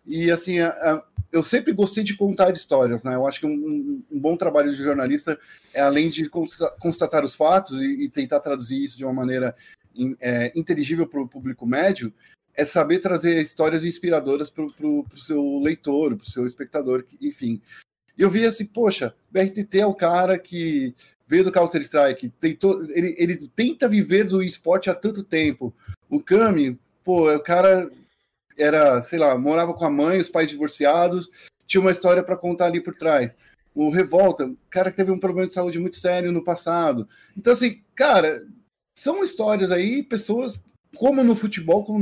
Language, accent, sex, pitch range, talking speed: Portuguese, Brazilian, male, 145-200 Hz, 175 wpm